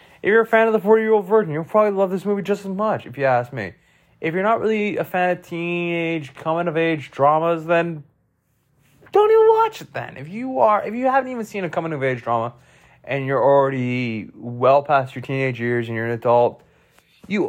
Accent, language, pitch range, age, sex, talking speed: American, English, 120-175 Hz, 20-39, male, 205 wpm